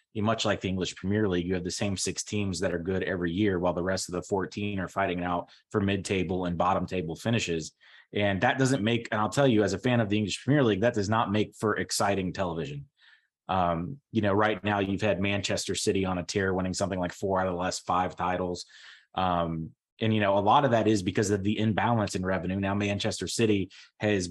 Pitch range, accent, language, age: 95-115 Hz, American, English, 30-49